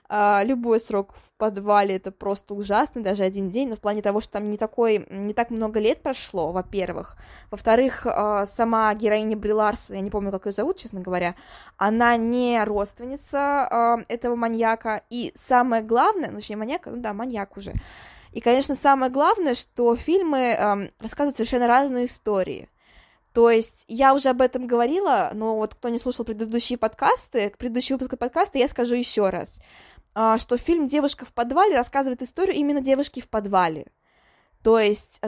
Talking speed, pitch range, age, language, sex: 160 wpm, 205-250 Hz, 20-39, Russian, female